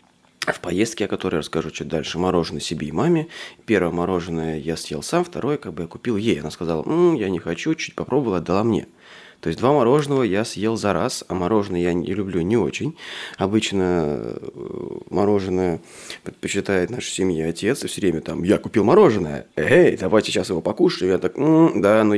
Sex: male